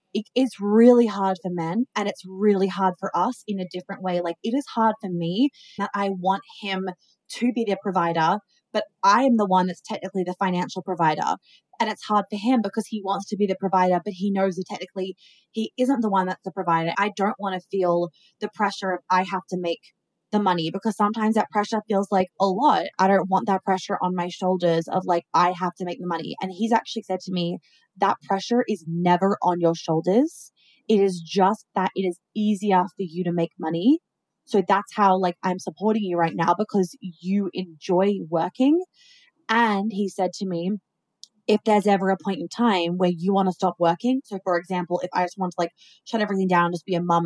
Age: 20-39